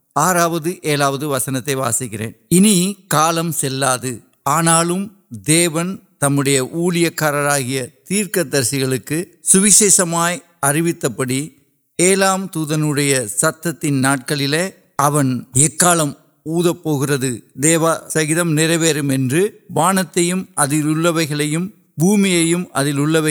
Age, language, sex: 60-79, Urdu, male